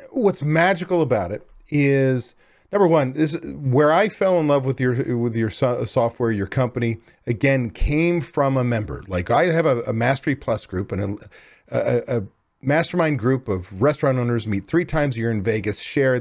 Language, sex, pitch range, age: English, male, 120-165 Hz, 40-59